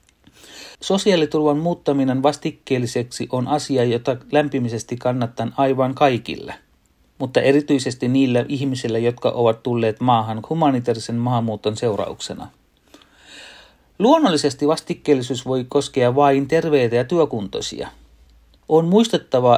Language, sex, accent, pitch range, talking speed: Finnish, male, native, 120-145 Hz, 95 wpm